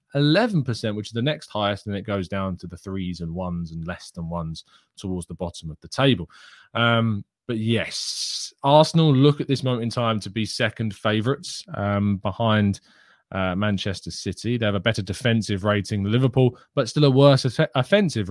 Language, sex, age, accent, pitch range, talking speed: English, male, 20-39, British, 100-125 Hz, 195 wpm